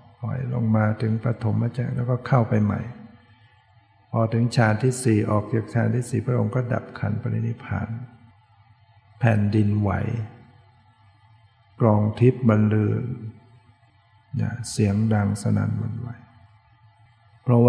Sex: male